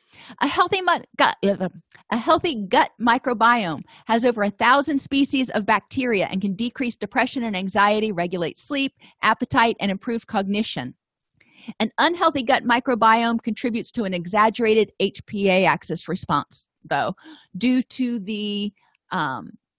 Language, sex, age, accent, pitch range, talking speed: English, female, 40-59, American, 185-245 Hz, 120 wpm